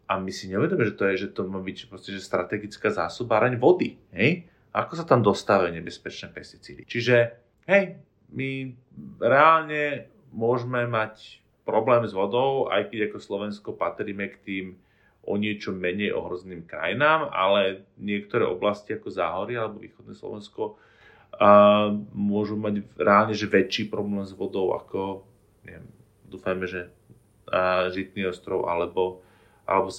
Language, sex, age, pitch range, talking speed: Slovak, male, 30-49, 95-110 Hz, 140 wpm